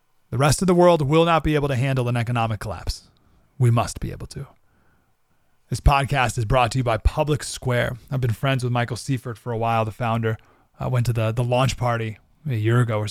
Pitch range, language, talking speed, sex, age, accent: 115-165 Hz, English, 230 wpm, male, 30-49, American